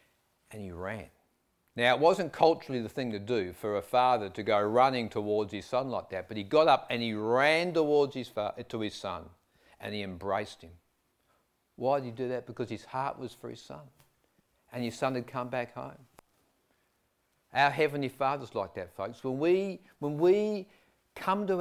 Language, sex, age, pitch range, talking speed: English, male, 50-69, 110-160 Hz, 195 wpm